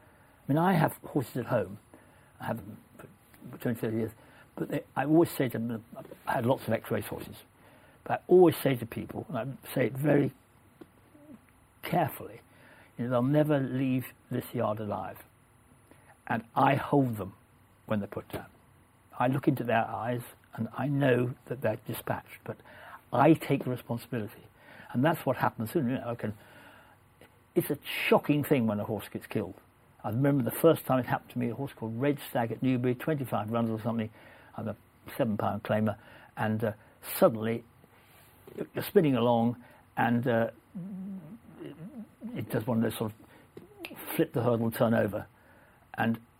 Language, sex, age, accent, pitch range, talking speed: English, male, 60-79, British, 110-135 Hz, 175 wpm